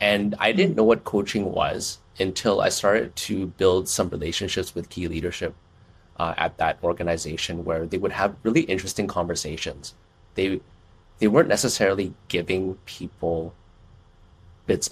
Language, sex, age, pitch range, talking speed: English, male, 30-49, 90-105 Hz, 140 wpm